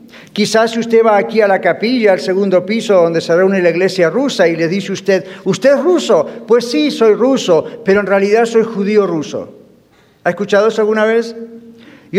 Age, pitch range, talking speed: 50-69, 195-235 Hz, 195 wpm